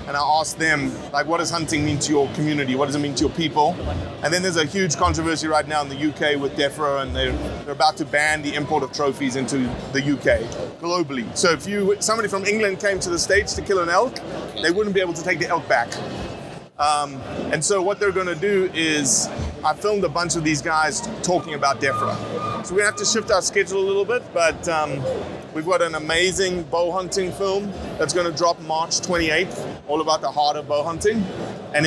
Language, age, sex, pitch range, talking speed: English, 30-49, male, 150-185 Hz, 230 wpm